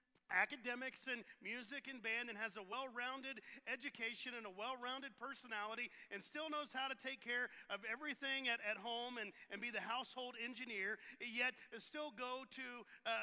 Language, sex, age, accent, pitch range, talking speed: English, male, 40-59, American, 210-255 Hz, 170 wpm